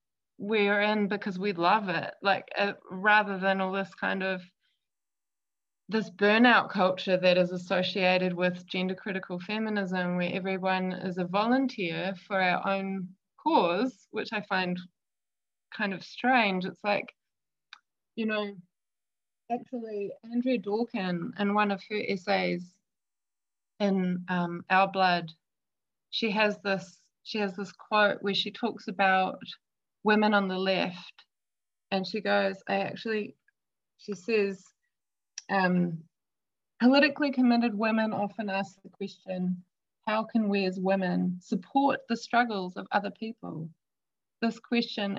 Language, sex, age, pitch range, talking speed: English, female, 20-39, 185-215 Hz, 130 wpm